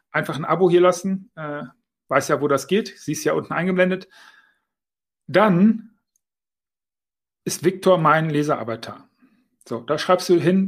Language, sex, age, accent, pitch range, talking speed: German, male, 40-59, German, 155-195 Hz, 140 wpm